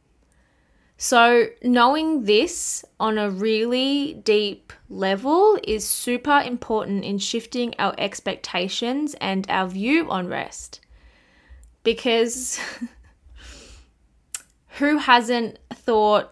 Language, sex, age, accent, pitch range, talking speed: English, female, 20-39, Australian, 190-245 Hz, 90 wpm